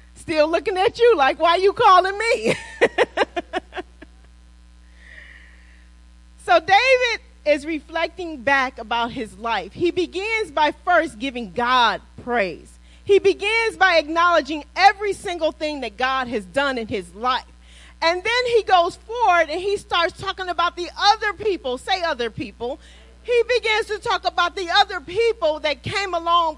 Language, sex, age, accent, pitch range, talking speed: English, female, 40-59, American, 235-360 Hz, 150 wpm